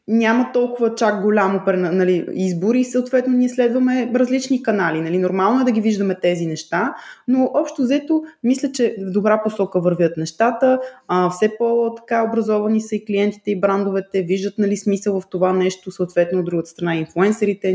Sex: female